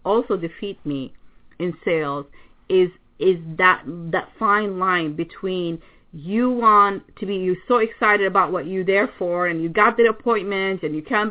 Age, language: 40-59, English